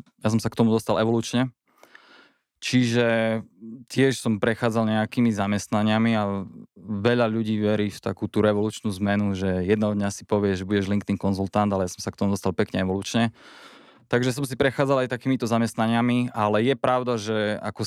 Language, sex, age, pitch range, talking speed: Slovak, male, 20-39, 105-120 Hz, 175 wpm